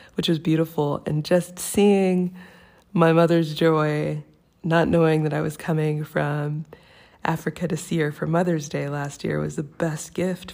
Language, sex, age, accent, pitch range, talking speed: English, female, 20-39, American, 155-180 Hz, 165 wpm